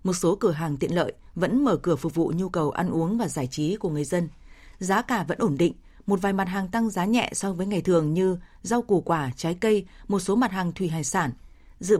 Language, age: Vietnamese, 20-39